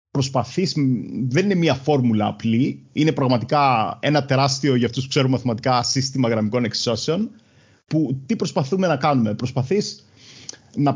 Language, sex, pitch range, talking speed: Greek, male, 130-175 Hz, 130 wpm